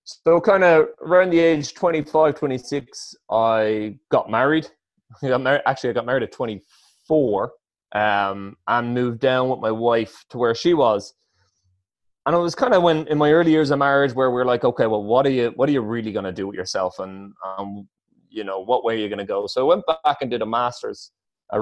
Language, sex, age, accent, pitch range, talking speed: English, male, 20-39, Irish, 110-140 Hz, 210 wpm